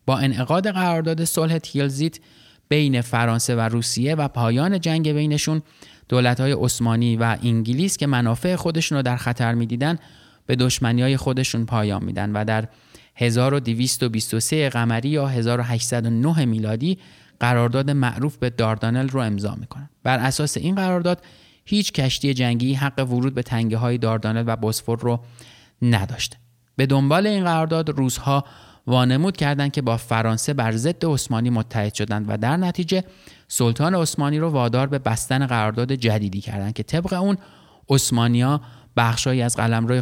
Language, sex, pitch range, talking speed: Persian, male, 115-150 Hz, 145 wpm